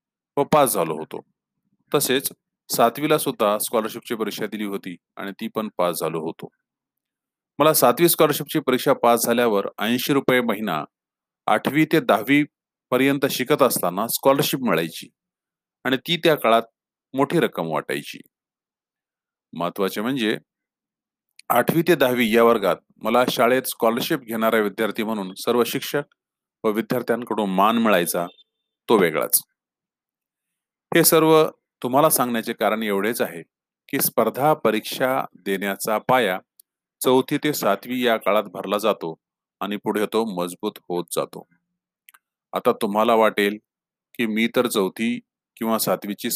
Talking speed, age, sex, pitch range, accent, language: 100 wpm, 40-59, male, 110-145 Hz, native, Marathi